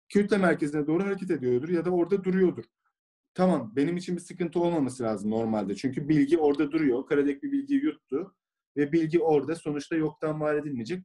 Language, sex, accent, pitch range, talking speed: English, male, Turkish, 130-165 Hz, 175 wpm